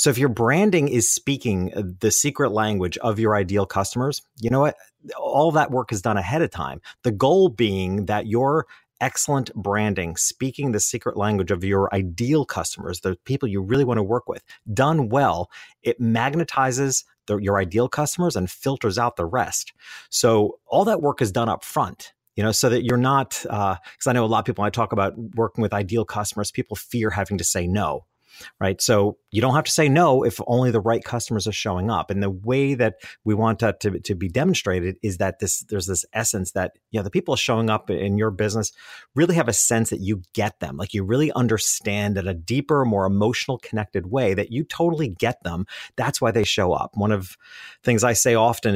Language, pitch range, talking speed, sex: English, 100-125 Hz, 215 wpm, male